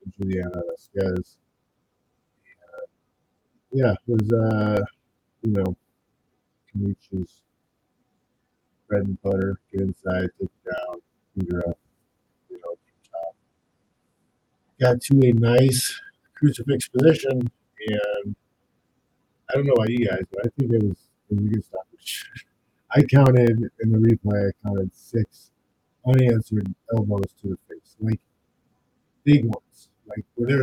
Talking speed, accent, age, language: 125 wpm, American, 50-69, English